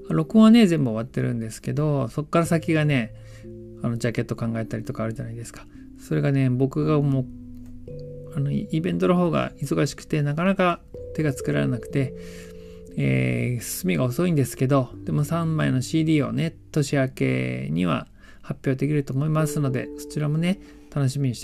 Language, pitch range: Japanese, 115-165 Hz